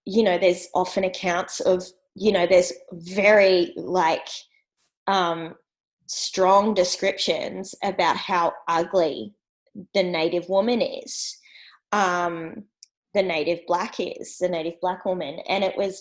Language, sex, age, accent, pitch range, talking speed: English, female, 20-39, Australian, 180-235 Hz, 125 wpm